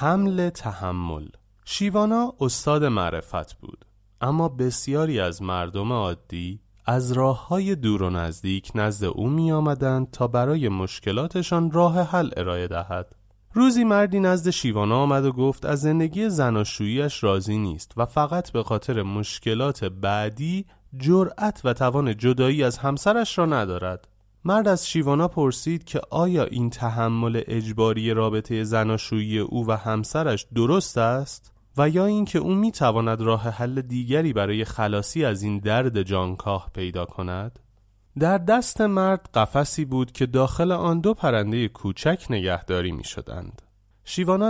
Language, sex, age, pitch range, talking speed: Persian, male, 30-49, 105-155 Hz, 135 wpm